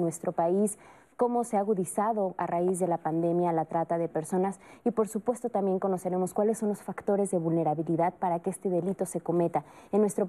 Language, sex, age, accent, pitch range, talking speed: Spanish, female, 30-49, Mexican, 180-220 Hz, 200 wpm